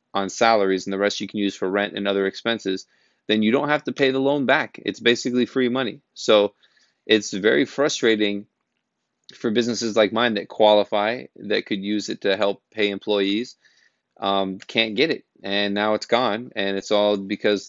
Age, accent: 30-49, American